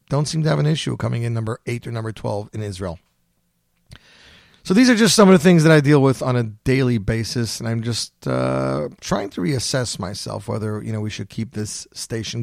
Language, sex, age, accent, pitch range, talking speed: English, male, 40-59, American, 110-130 Hz, 225 wpm